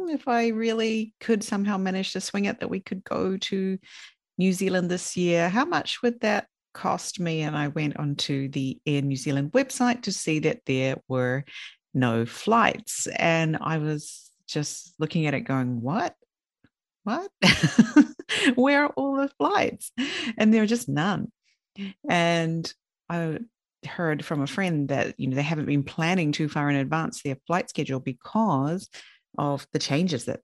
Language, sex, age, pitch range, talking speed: English, female, 40-59, 140-200 Hz, 170 wpm